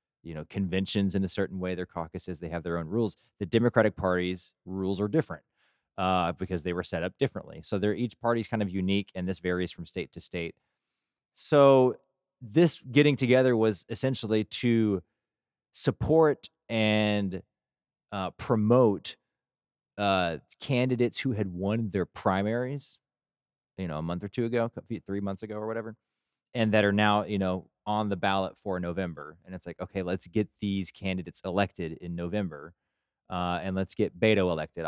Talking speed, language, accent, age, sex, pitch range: 170 wpm, English, American, 30-49, male, 90-115 Hz